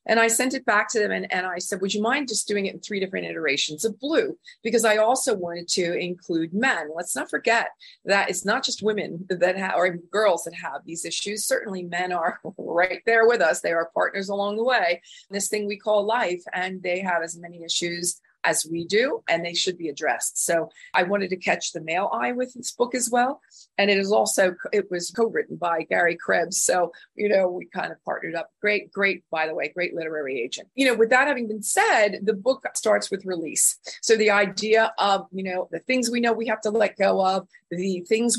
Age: 40-59